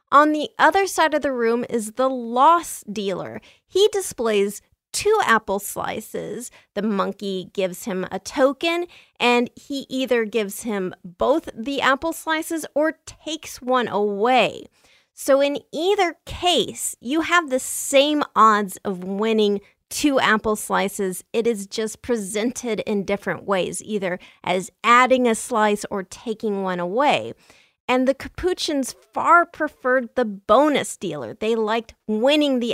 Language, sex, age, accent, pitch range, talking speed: English, female, 30-49, American, 210-270 Hz, 140 wpm